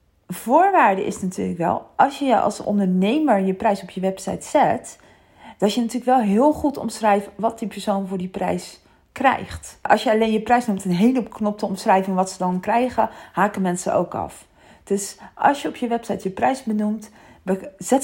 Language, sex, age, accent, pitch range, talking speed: Dutch, female, 40-59, Dutch, 190-245 Hz, 195 wpm